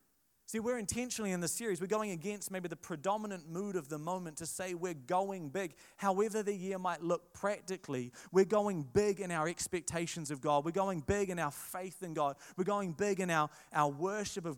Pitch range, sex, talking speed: 160-205 Hz, male, 210 wpm